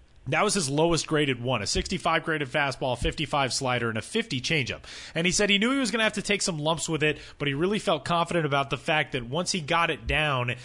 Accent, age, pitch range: American, 30-49, 125-165 Hz